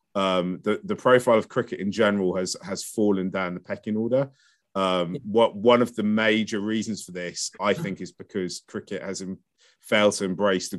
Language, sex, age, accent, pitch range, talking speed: English, male, 30-49, British, 95-115 Hz, 195 wpm